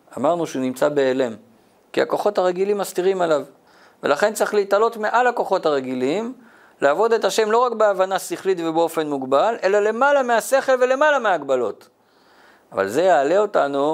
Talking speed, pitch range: 140 wpm, 140-215 Hz